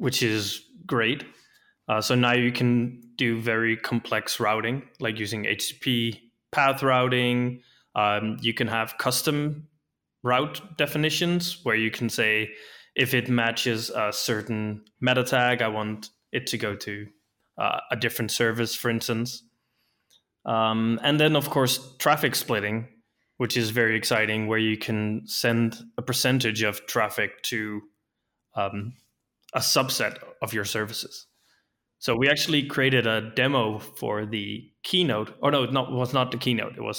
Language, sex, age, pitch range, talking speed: English, male, 20-39, 110-125 Hz, 145 wpm